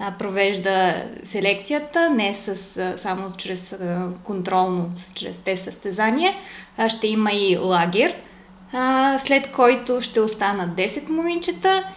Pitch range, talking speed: 190-255 Hz, 100 wpm